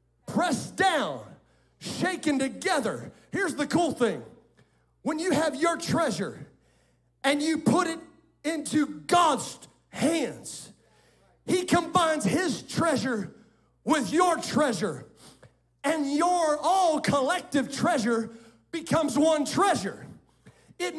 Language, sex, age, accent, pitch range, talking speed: English, male, 40-59, American, 265-330 Hz, 100 wpm